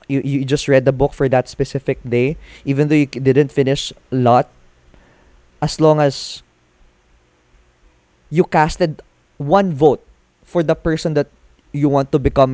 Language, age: Filipino, 20-39